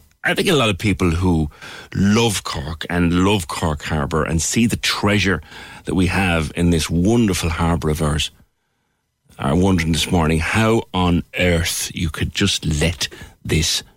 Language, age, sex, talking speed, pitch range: English, 60-79, male, 165 wpm, 80-105 Hz